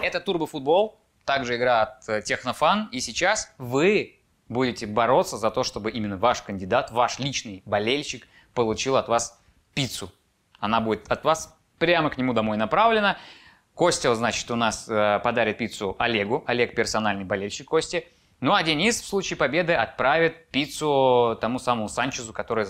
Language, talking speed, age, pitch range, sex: Russian, 150 wpm, 20-39, 110-155 Hz, male